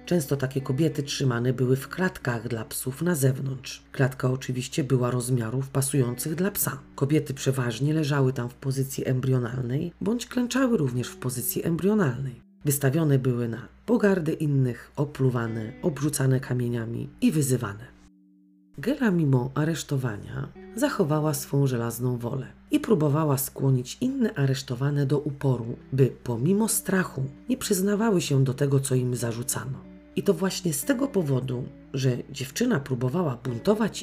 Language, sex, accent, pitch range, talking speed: Polish, female, native, 130-170 Hz, 135 wpm